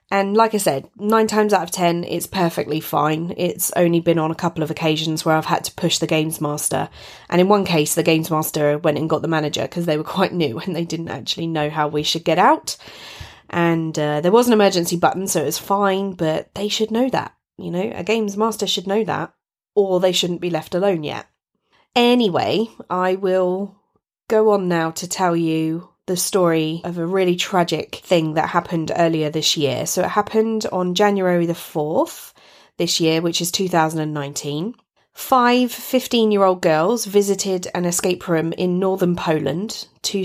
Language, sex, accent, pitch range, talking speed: English, female, British, 160-200 Hz, 195 wpm